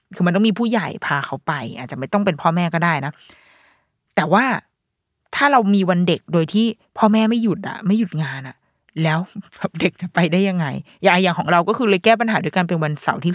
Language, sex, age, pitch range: Thai, female, 20-39, 170-225 Hz